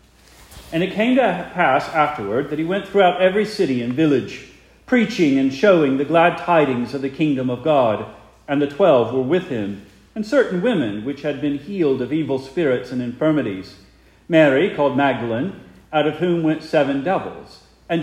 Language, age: English, 40-59